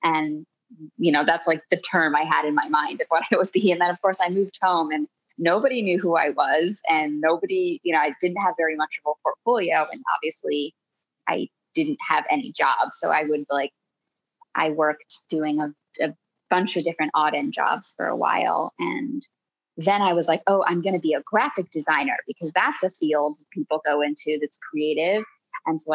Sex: female